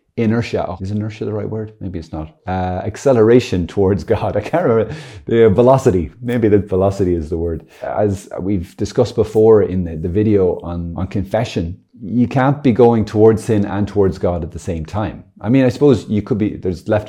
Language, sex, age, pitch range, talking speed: English, male, 30-49, 90-110 Hz, 205 wpm